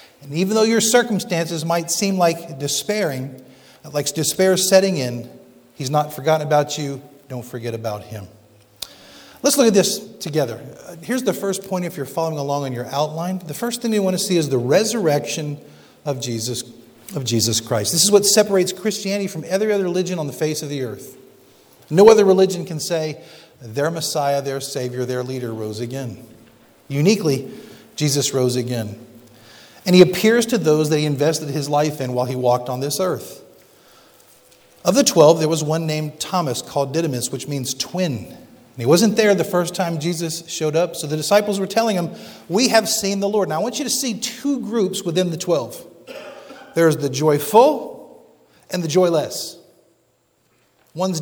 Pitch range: 140-190 Hz